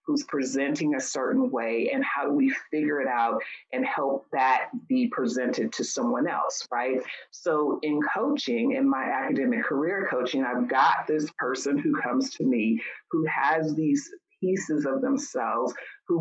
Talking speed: 165 wpm